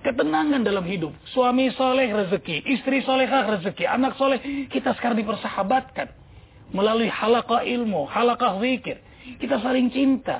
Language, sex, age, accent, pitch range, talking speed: English, male, 40-59, Indonesian, 215-280 Hz, 125 wpm